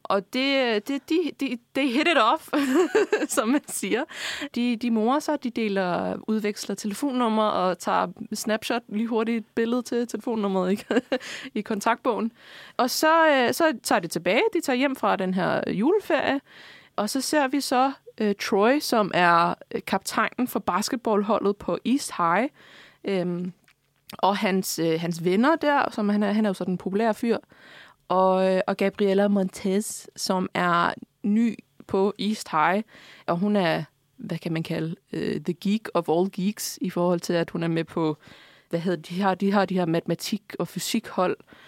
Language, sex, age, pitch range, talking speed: Danish, female, 20-39, 180-245 Hz, 170 wpm